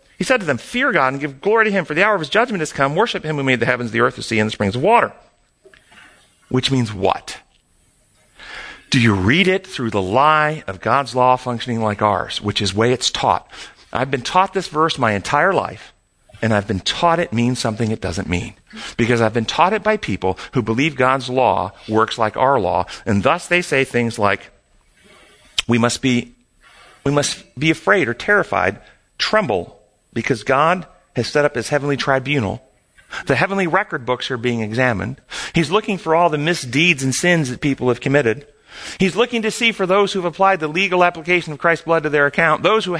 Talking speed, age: 210 wpm, 40-59